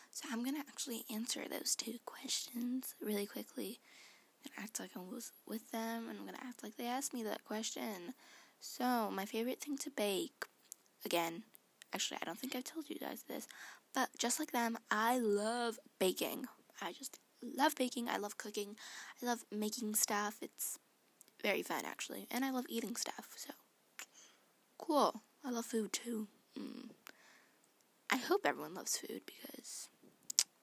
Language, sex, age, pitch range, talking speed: English, female, 10-29, 215-265 Hz, 165 wpm